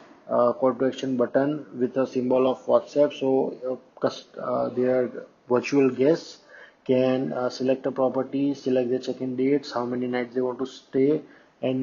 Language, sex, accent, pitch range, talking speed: English, male, Indian, 130-150 Hz, 160 wpm